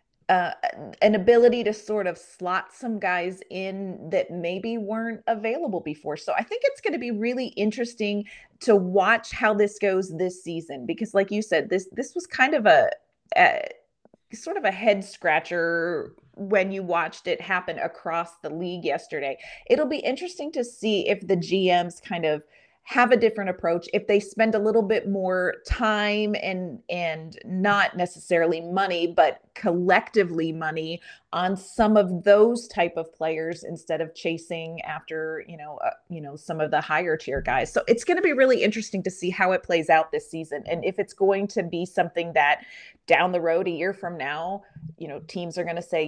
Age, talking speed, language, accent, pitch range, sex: 30-49, 190 wpm, English, American, 170-220 Hz, female